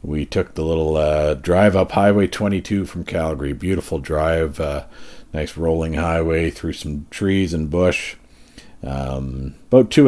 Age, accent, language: 50-69, American, English